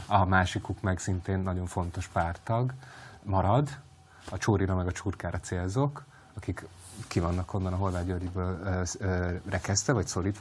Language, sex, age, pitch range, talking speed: Hungarian, male, 30-49, 90-105 Hz, 135 wpm